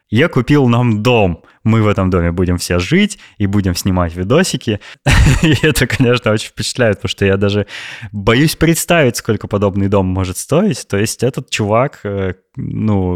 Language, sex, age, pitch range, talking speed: Russian, male, 20-39, 95-125 Hz, 160 wpm